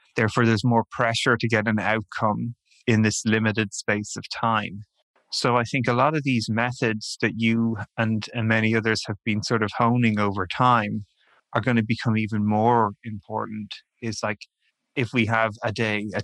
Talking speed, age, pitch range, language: 185 wpm, 30-49, 110-120 Hz, English